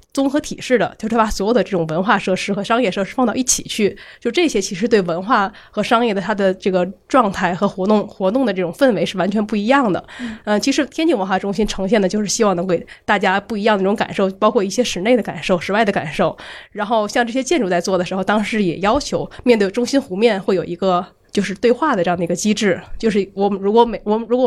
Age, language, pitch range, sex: 20-39, Chinese, 190-235 Hz, female